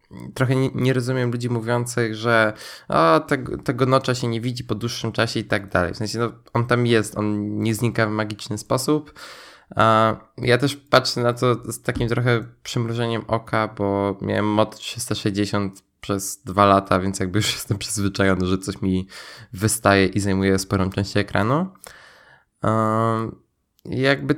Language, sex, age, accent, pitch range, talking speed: Polish, male, 20-39, native, 105-130 Hz, 155 wpm